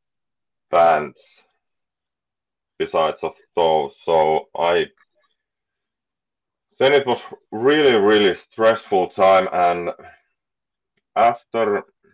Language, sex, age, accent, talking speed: English, male, 30-49, Finnish, 75 wpm